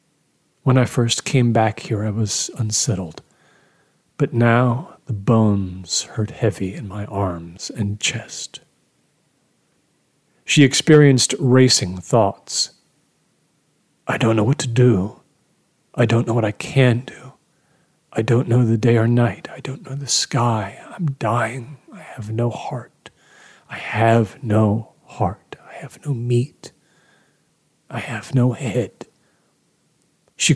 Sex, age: male, 40-59